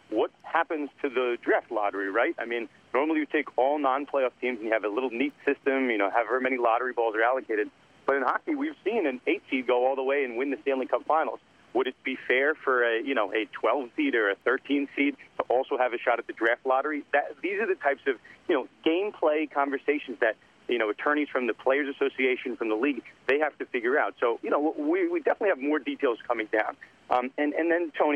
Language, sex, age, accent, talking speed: English, male, 40-59, American, 235 wpm